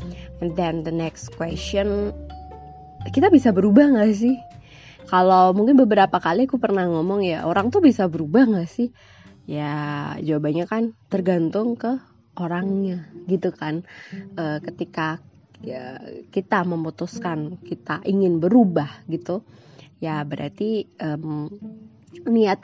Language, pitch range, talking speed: Indonesian, 165-200 Hz, 120 wpm